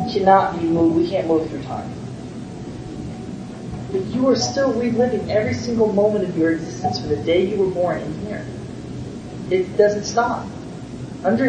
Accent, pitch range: American, 190-255 Hz